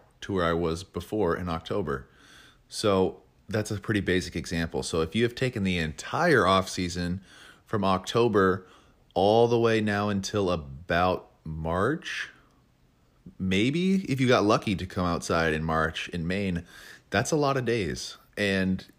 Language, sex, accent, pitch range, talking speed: English, male, American, 90-105 Hz, 150 wpm